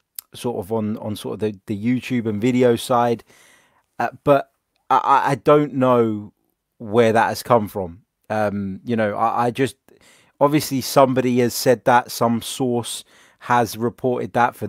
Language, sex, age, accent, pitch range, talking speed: English, male, 20-39, British, 105-130 Hz, 165 wpm